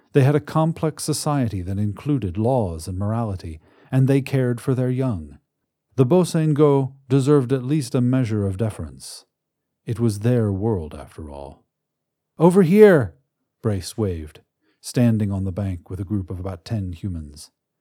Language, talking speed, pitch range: English, 155 wpm, 95-135 Hz